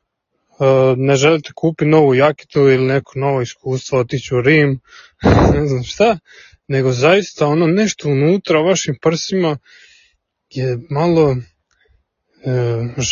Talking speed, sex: 120 wpm, male